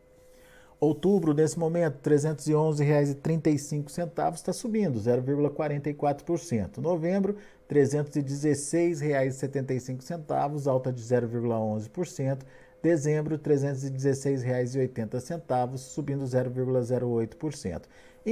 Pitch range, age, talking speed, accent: 120-160 Hz, 50-69, 60 wpm, Brazilian